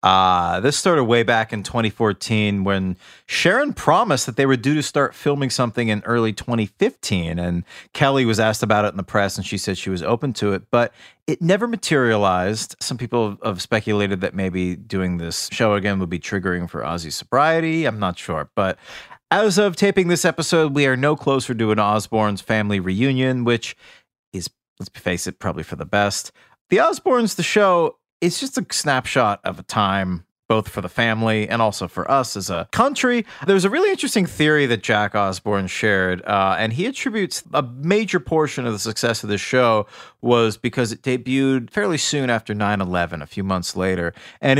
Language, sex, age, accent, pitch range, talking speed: English, male, 30-49, American, 100-140 Hz, 190 wpm